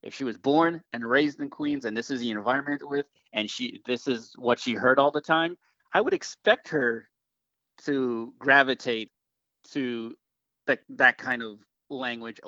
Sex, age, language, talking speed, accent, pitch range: male, 30-49, English, 175 wpm, American, 115-150 Hz